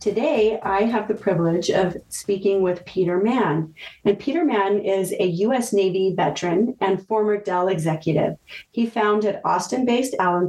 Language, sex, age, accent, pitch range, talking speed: English, female, 40-59, American, 180-215 Hz, 150 wpm